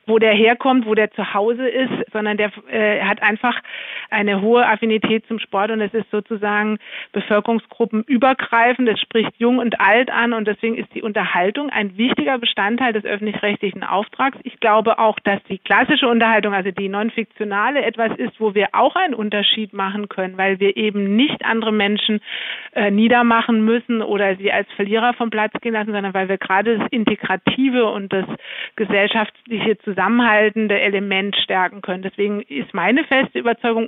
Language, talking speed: German, 170 wpm